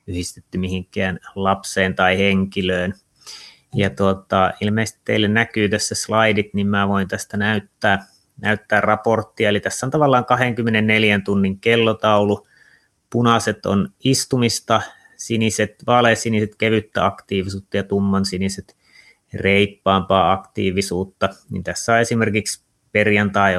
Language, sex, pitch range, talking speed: Finnish, male, 95-110 Hz, 110 wpm